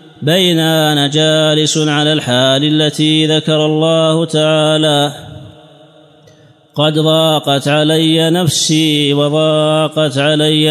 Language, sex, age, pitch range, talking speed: Arabic, male, 30-49, 145-160 Hz, 80 wpm